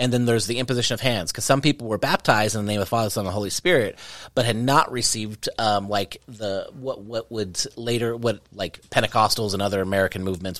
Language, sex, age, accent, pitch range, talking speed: English, male, 30-49, American, 100-125 Hz, 240 wpm